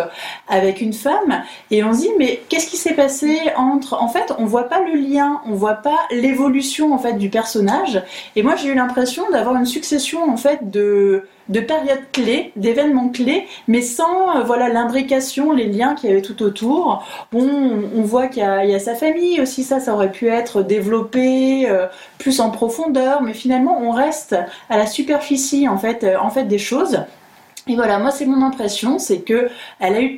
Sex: female